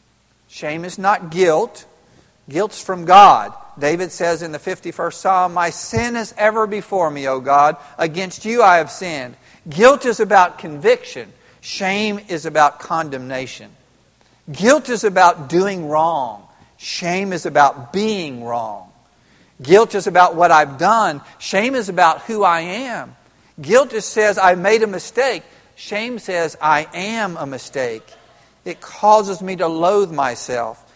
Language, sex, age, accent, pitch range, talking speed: English, male, 50-69, American, 165-215 Hz, 145 wpm